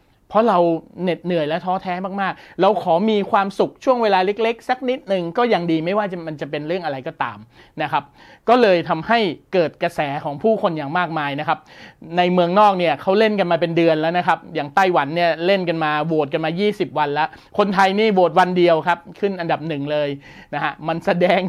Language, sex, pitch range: Thai, male, 155-195 Hz